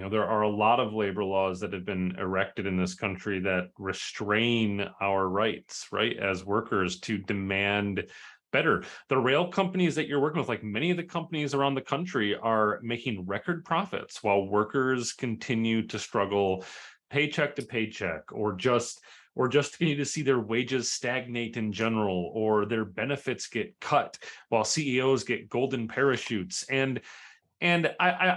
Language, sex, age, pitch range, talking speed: English, male, 30-49, 110-150 Hz, 165 wpm